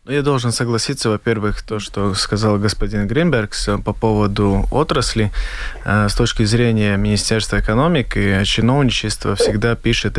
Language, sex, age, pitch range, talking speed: Russian, male, 20-39, 105-120 Hz, 120 wpm